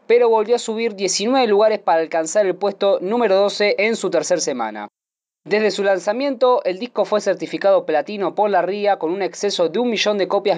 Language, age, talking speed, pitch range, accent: Spanish, 20-39, 200 wpm, 180-225 Hz, Argentinian